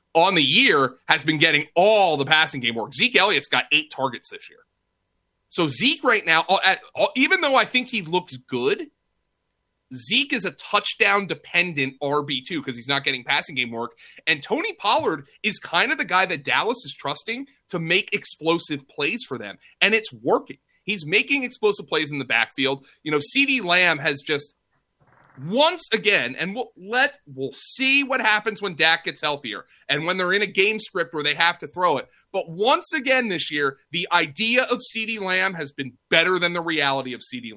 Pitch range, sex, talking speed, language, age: 155-225 Hz, male, 190 wpm, English, 30-49